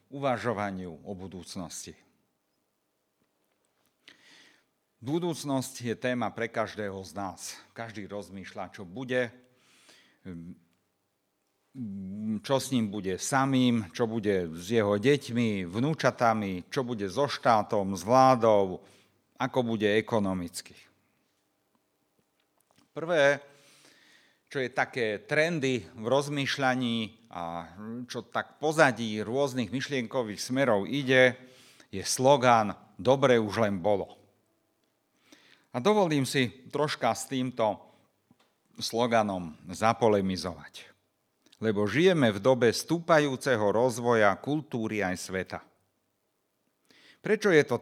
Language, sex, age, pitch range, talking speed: Slovak, male, 50-69, 100-135 Hz, 95 wpm